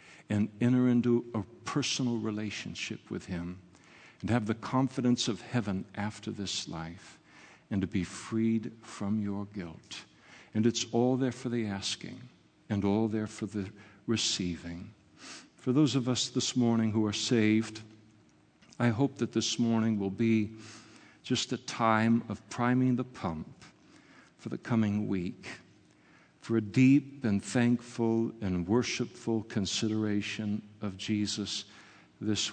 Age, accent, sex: 60-79, American, male